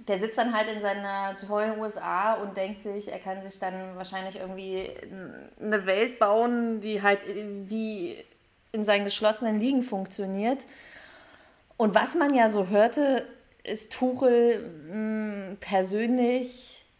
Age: 30-49